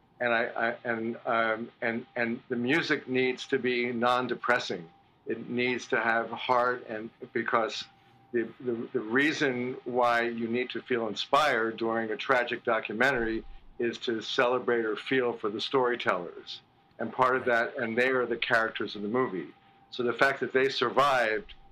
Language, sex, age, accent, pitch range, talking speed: English, male, 50-69, American, 110-125 Hz, 165 wpm